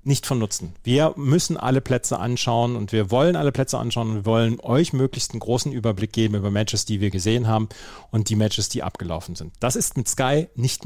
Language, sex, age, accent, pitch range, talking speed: German, male, 40-59, German, 110-135 Hz, 220 wpm